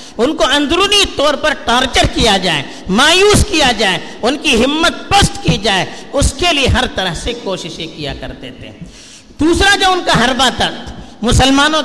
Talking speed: 170 wpm